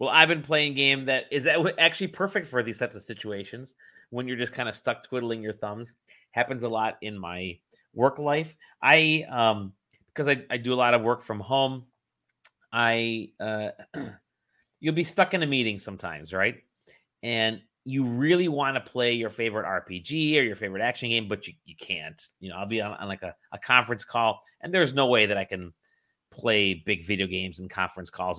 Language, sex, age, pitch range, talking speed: English, male, 30-49, 100-145 Hz, 205 wpm